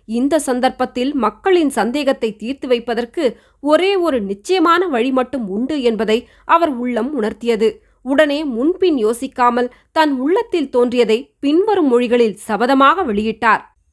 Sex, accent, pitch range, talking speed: female, native, 210-270 Hz, 110 wpm